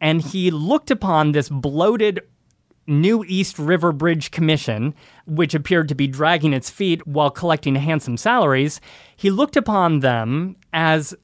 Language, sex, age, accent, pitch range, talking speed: English, male, 30-49, American, 145-190 Hz, 145 wpm